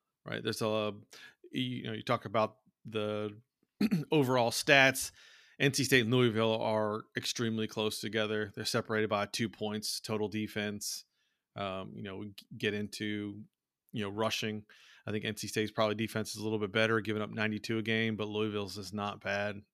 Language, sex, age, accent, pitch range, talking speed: English, male, 30-49, American, 105-125 Hz, 170 wpm